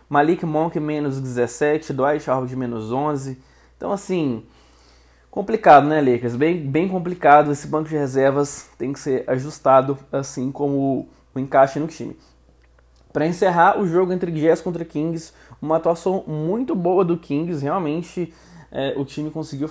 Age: 20-39